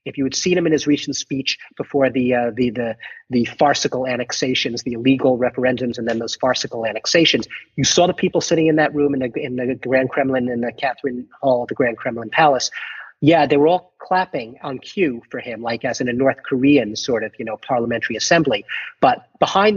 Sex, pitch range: male, 125-155 Hz